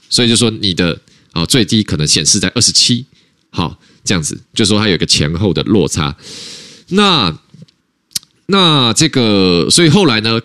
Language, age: Chinese, 20-39